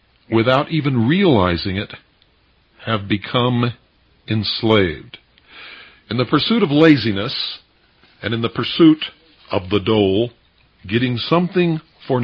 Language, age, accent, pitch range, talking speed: English, 50-69, American, 110-140 Hz, 110 wpm